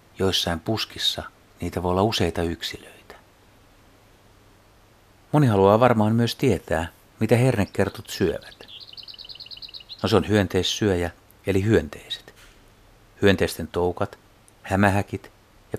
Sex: male